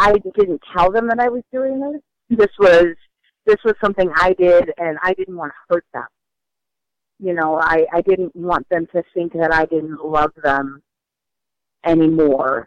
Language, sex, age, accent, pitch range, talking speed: English, female, 40-59, American, 165-205 Hz, 180 wpm